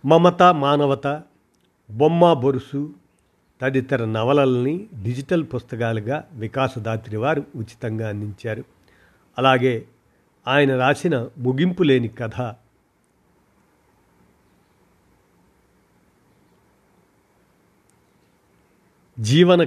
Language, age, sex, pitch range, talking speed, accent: Telugu, 50-69, male, 110-140 Hz, 55 wpm, native